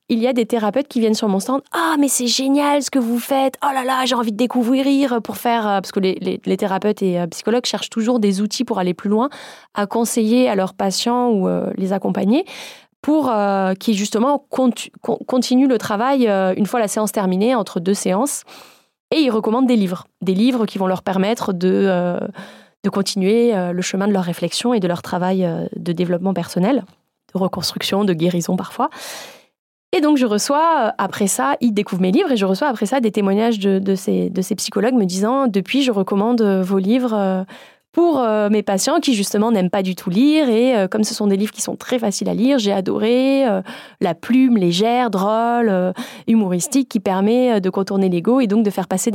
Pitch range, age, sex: 195-250 Hz, 20-39, female